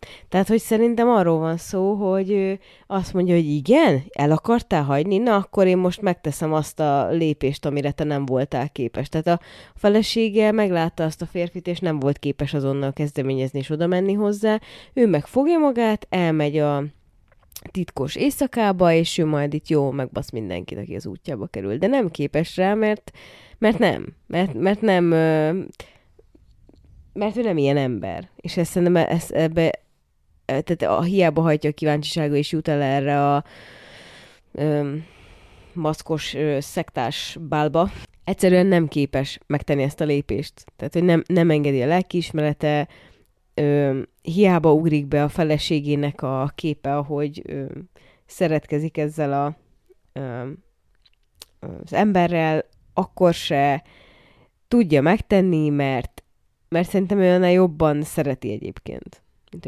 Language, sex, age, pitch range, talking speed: Hungarian, female, 20-39, 145-180 Hz, 140 wpm